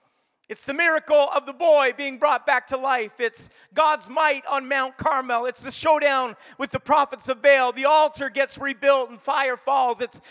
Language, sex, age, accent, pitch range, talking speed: English, male, 40-59, American, 275-320 Hz, 190 wpm